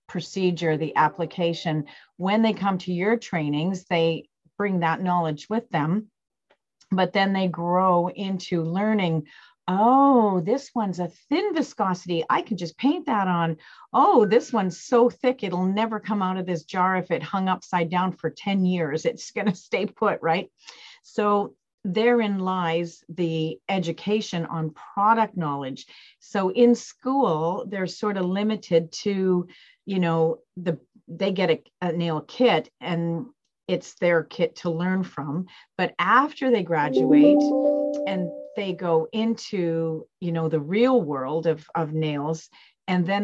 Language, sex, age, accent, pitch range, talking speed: English, female, 40-59, American, 165-205 Hz, 150 wpm